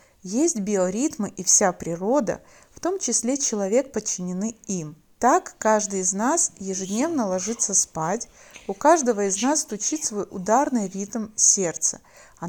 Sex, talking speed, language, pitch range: female, 135 wpm, Russian, 185-240 Hz